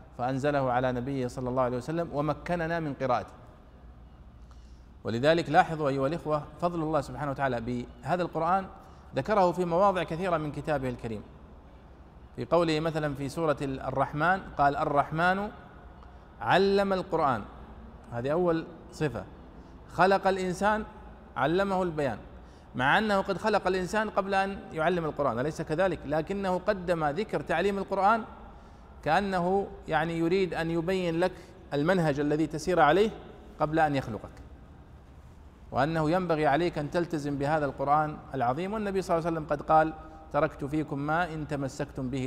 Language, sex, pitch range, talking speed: Arabic, male, 130-175 Hz, 135 wpm